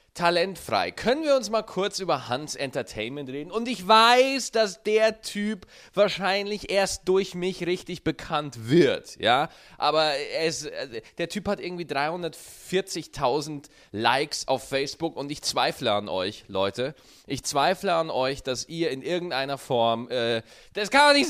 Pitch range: 130-195 Hz